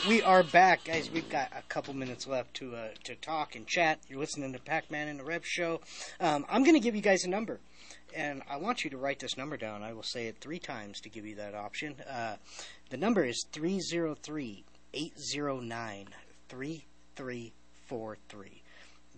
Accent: American